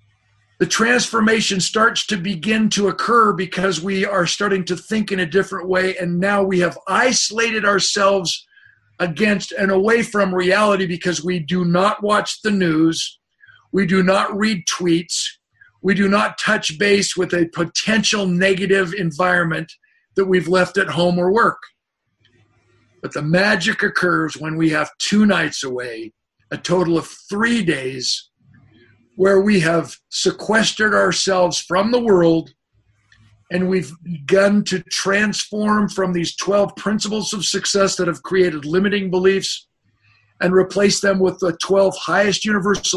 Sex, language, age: male, English, 50-69